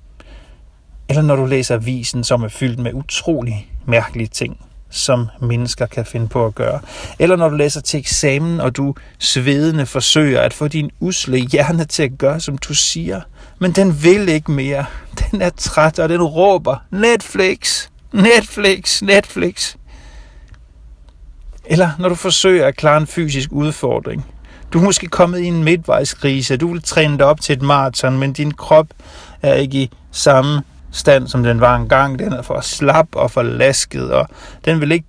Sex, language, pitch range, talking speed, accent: male, Danish, 120-155 Hz, 175 wpm, native